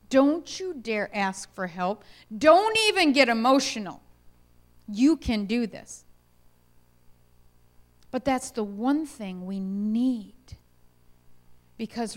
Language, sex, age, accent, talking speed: English, female, 40-59, American, 110 wpm